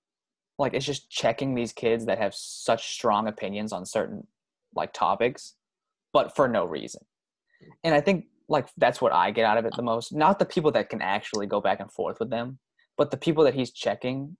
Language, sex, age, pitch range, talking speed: English, male, 20-39, 105-135 Hz, 210 wpm